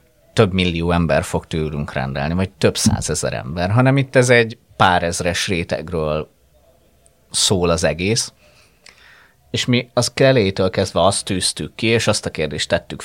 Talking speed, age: 150 wpm, 30-49